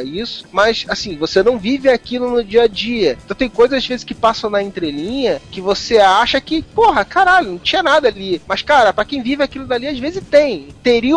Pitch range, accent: 155-235 Hz, Brazilian